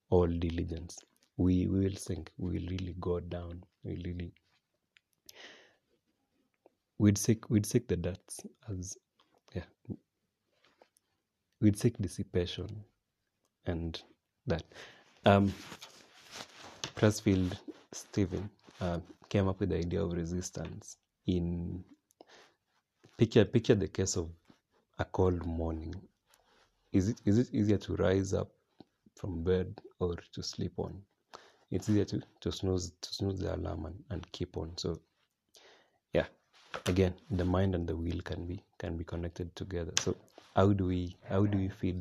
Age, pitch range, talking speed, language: 30-49, 85-100 Hz, 135 wpm, English